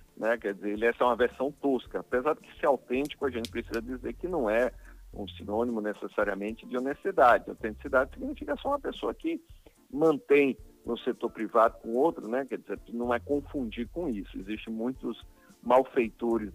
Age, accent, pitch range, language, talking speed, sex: 50-69, Brazilian, 110-130 Hz, Portuguese, 170 wpm, male